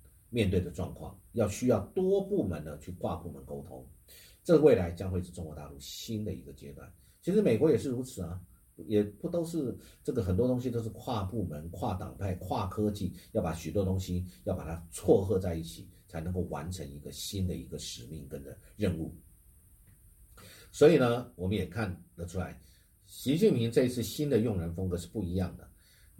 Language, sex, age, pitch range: Chinese, male, 50-69, 85-105 Hz